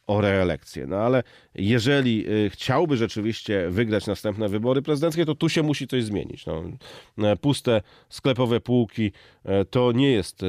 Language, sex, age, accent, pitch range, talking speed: Polish, male, 30-49, native, 100-130 Hz, 130 wpm